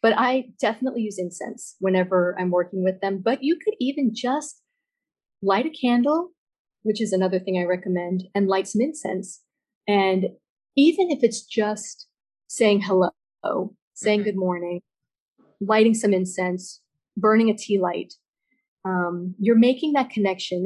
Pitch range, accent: 190-245 Hz, American